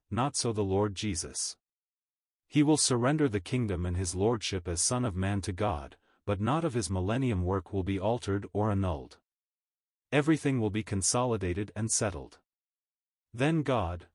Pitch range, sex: 95-120 Hz, male